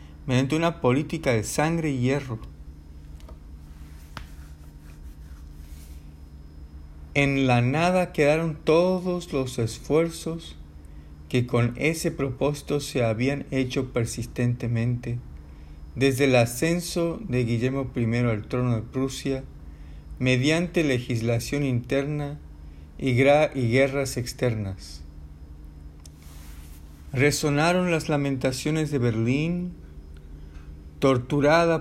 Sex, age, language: male, 50-69, Spanish